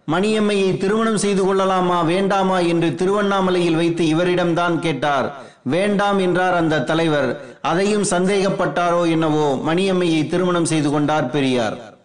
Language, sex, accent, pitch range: Tamil, male, native, 165-200 Hz